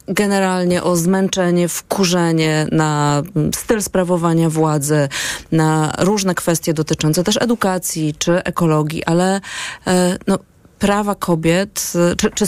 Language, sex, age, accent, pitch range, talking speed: Polish, female, 30-49, native, 170-200 Hz, 105 wpm